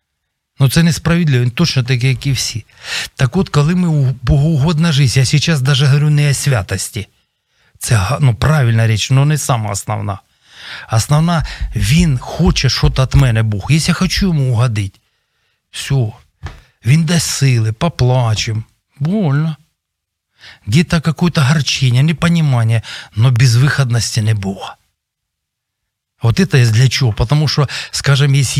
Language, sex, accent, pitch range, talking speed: Ukrainian, male, native, 115-150 Hz, 140 wpm